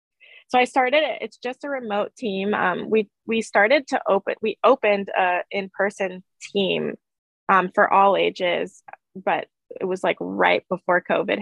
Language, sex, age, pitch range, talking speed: English, female, 20-39, 190-220 Hz, 165 wpm